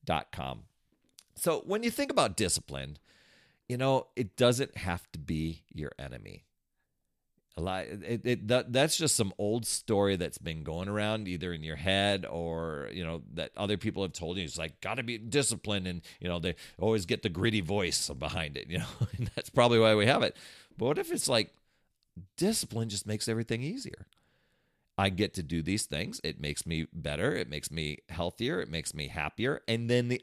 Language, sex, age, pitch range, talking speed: English, male, 40-59, 85-120 Hz, 200 wpm